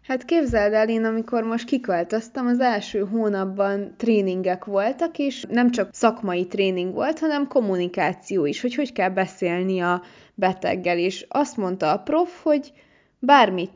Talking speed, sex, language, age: 150 wpm, female, Hungarian, 20-39